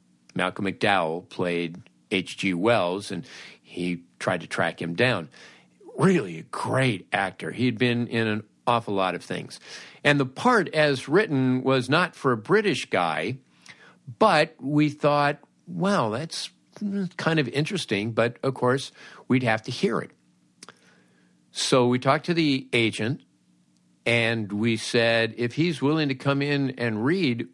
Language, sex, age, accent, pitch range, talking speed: English, male, 50-69, American, 100-140 Hz, 150 wpm